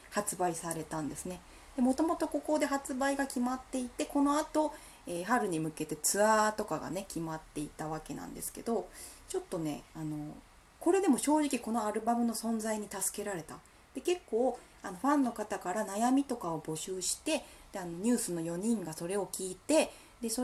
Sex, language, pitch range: female, Japanese, 160-265 Hz